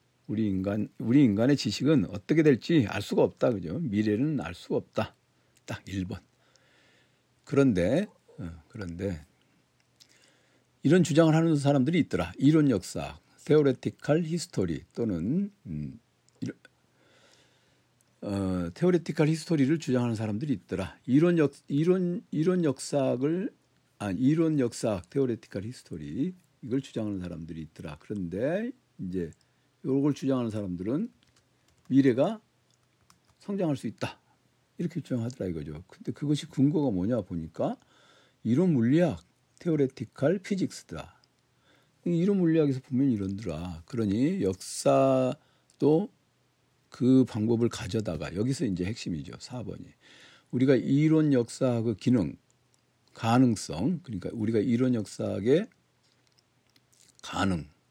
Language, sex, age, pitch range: Korean, male, 60-79, 105-145 Hz